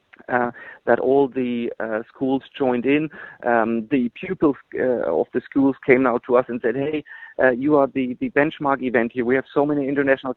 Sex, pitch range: male, 120-140 Hz